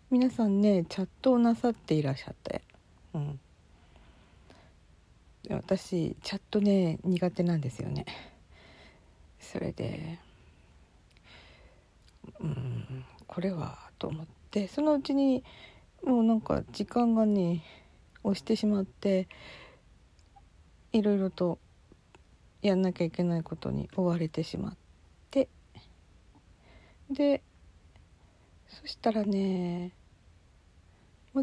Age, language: 40-59, Japanese